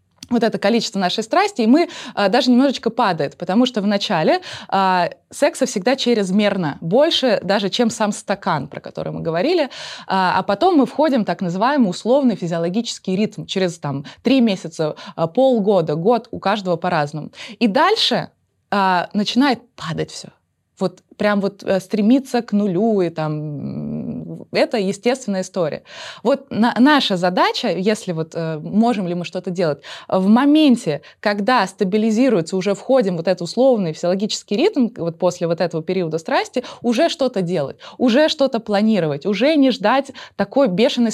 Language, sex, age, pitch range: Russian, female, 20-39, 180-245 Hz